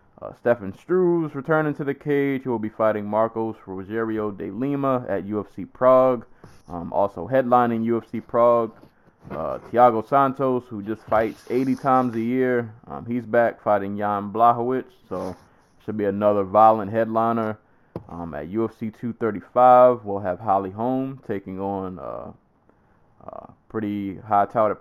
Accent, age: American, 20-39